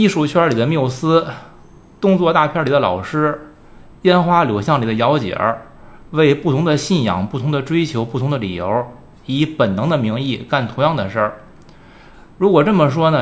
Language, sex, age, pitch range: Chinese, male, 20-39, 115-165 Hz